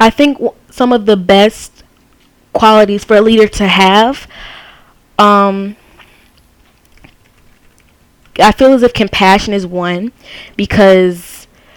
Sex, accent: female, American